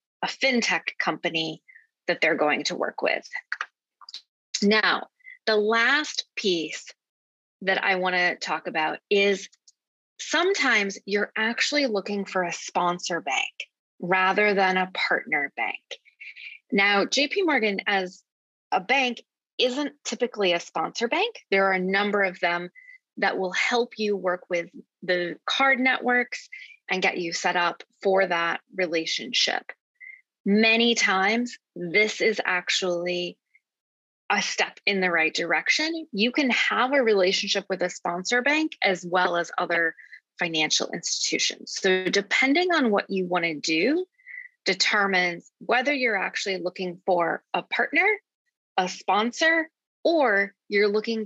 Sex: female